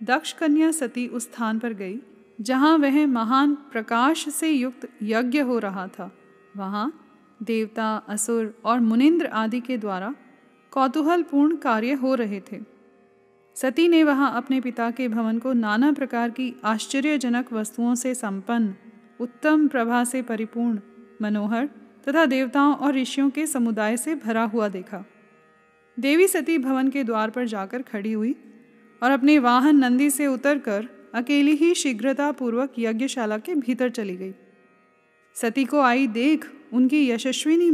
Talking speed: 140 wpm